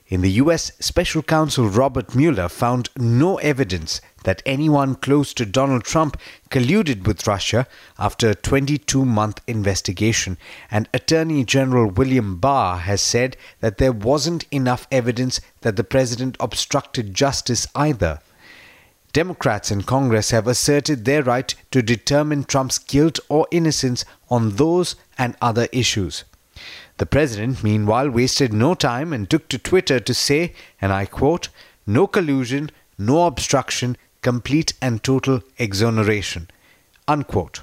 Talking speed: 130 wpm